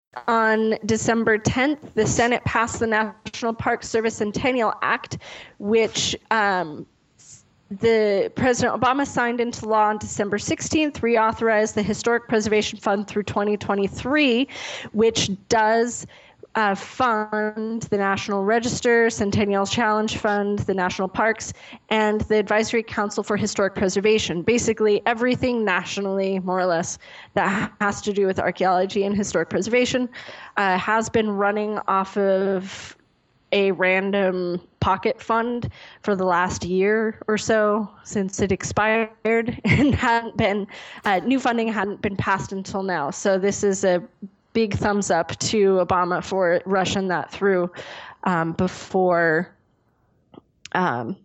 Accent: American